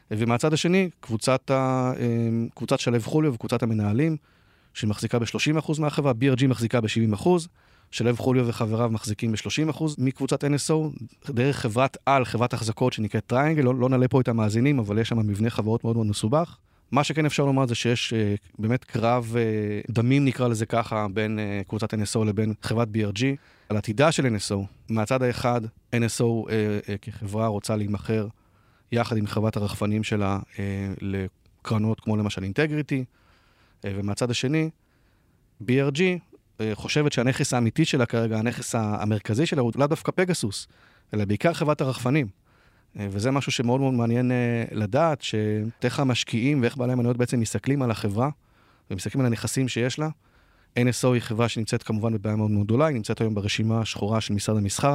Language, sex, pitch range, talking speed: Hebrew, male, 110-130 Hz, 155 wpm